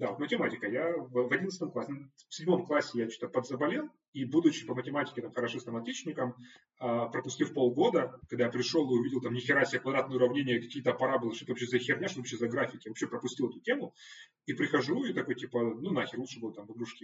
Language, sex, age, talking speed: Ukrainian, male, 30-49, 215 wpm